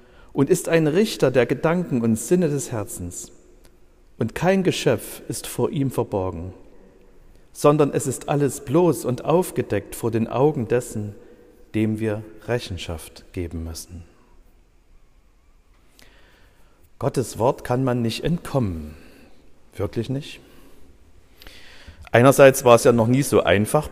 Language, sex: German, male